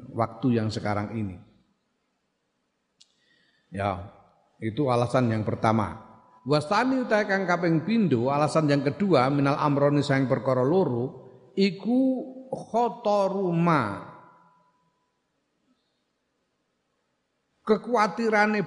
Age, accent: 50-69, native